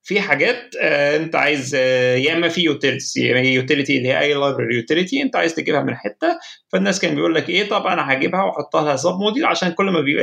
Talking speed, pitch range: 205 wpm, 140-210 Hz